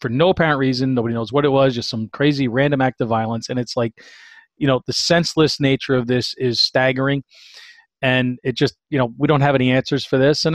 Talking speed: 235 wpm